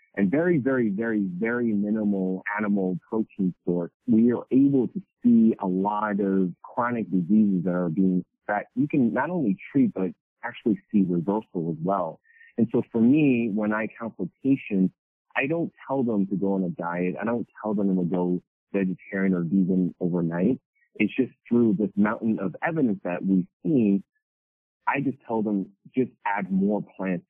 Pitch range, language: 95-120 Hz, English